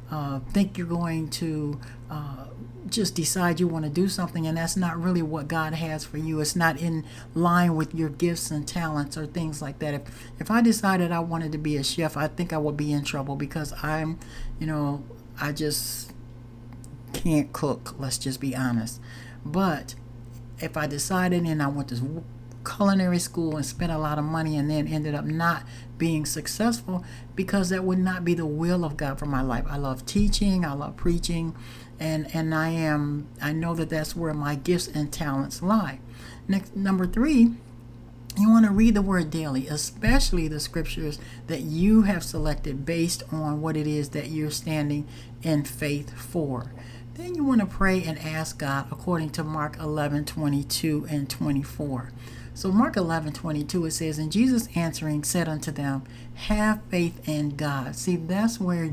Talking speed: 185 wpm